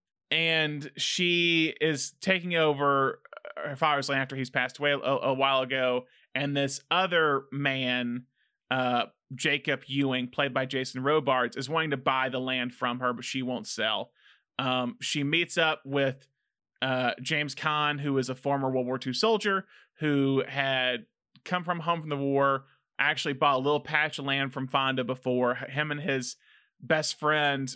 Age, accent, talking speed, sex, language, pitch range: 20-39, American, 170 wpm, male, English, 130-155 Hz